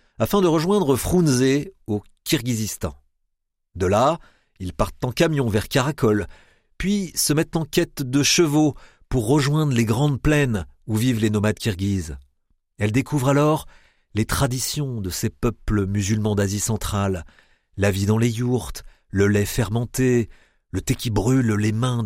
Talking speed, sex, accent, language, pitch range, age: 150 wpm, male, French, French, 100-130 Hz, 50-69